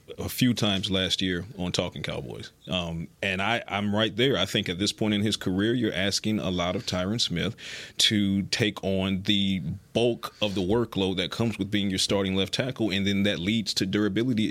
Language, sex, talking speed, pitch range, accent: English, male, 205 wpm, 95-115 Hz, American